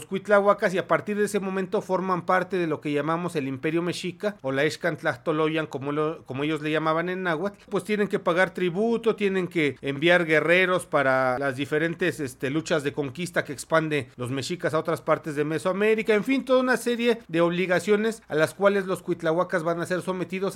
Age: 40-59